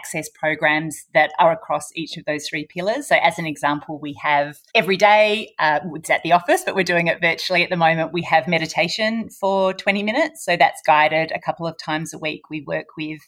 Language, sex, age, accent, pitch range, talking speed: English, female, 30-49, Australian, 155-180 Hz, 220 wpm